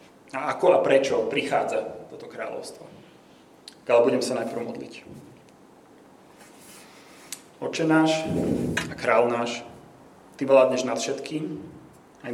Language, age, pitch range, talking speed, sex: Slovak, 30-49, 120-160 Hz, 100 wpm, male